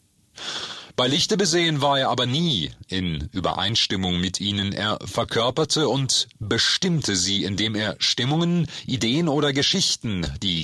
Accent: German